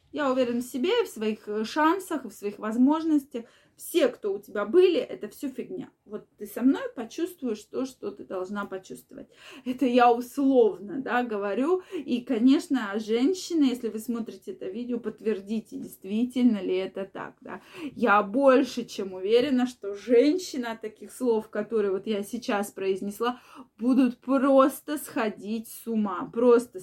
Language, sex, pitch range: Russian, female, 215-260 Hz